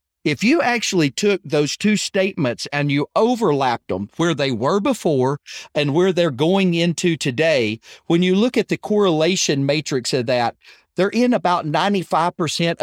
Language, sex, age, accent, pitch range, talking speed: English, male, 40-59, American, 140-195 Hz, 160 wpm